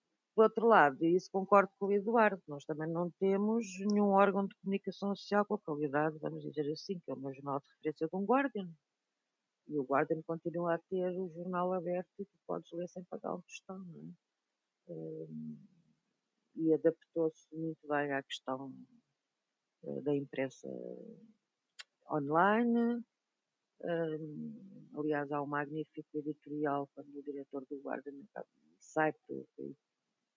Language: Portuguese